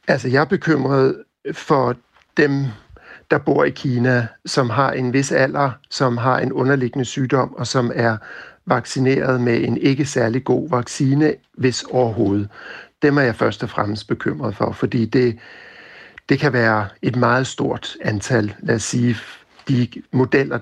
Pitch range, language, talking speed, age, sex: 120-140 Hz, Danish, 155 wpm, 60-79, male